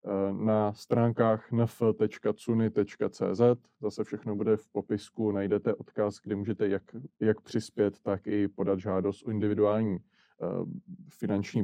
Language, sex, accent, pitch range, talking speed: Czech, male, native, 95-110 Hz, 115 wpm